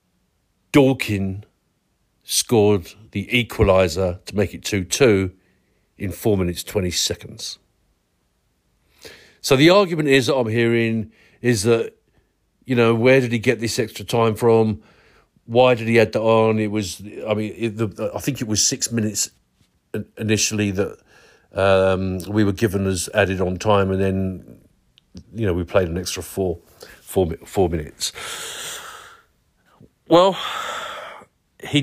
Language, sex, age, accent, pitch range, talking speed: English, male, 50-69, British, 95-125 Hz, 140 wpm